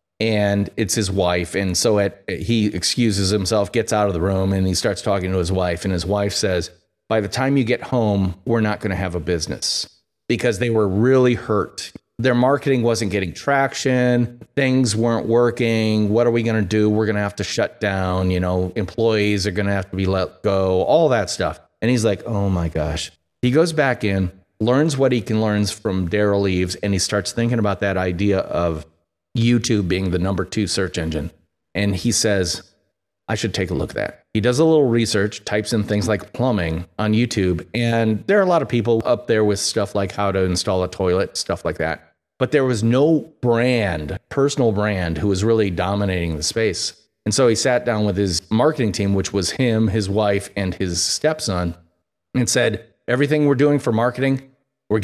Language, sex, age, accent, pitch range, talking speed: English, male, 30-49, American, 95-115 Hz, 210 wpm